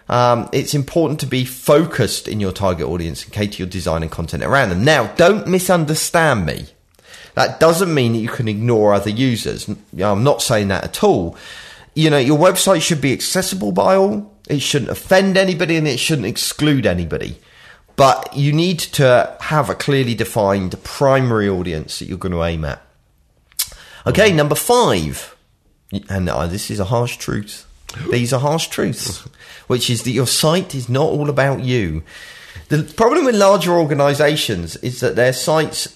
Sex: male